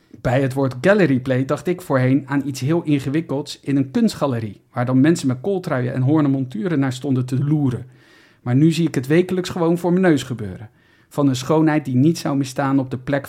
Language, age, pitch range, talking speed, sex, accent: Dutch, 50-69, 130-165 Hz, 210 wpm, male, Dutch